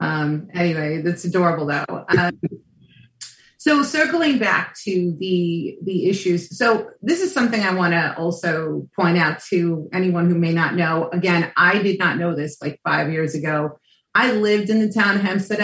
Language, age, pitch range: English, 30-49, 170-200 Hz